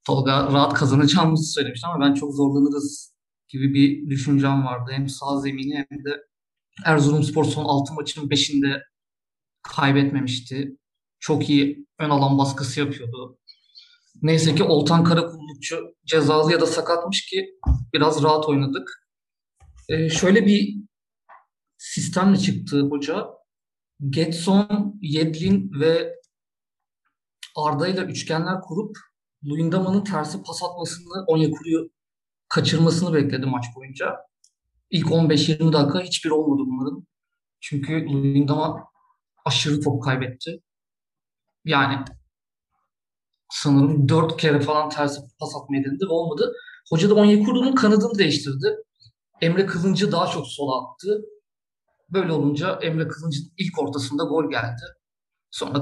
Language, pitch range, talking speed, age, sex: Turkish, 140-170 Hz, 110 wpm, 50-69, male